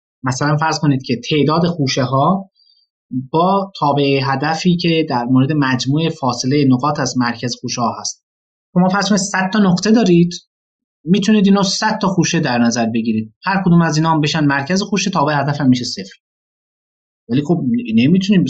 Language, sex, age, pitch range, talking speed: Persian, male, 30-49, 140-195 Hz, 165 wpm